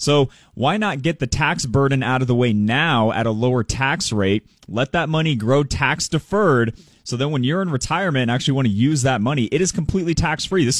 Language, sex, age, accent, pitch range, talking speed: English, male, 30-49, American, 115-150 Hz, 235 wpm